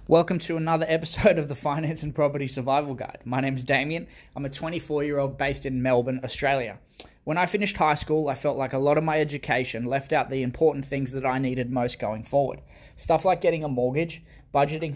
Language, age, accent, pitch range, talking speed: English, 20-39, Australian, 125-150 Hz, 210 wpm